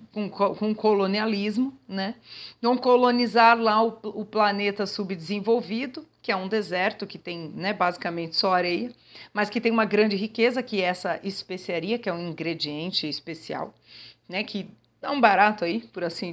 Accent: Brazilian